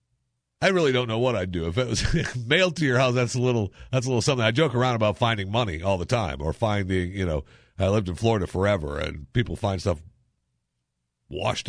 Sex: male